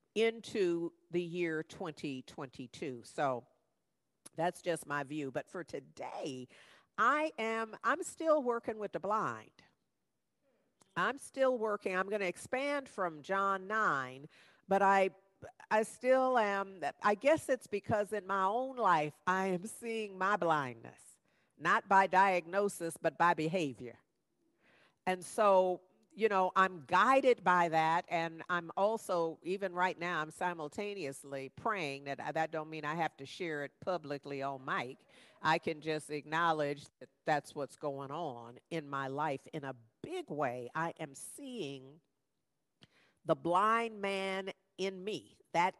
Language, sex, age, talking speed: English, female, 50-69, 140 wpm